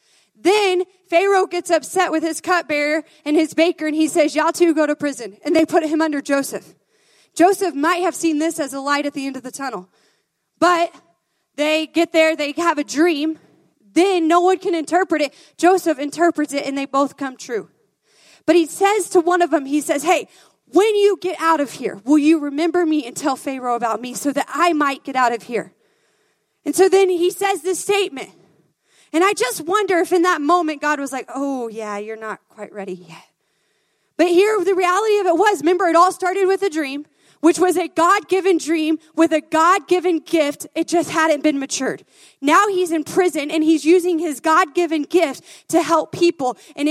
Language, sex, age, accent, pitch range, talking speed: English, female, 30-49, American, 295-360 Hz, 205 wpm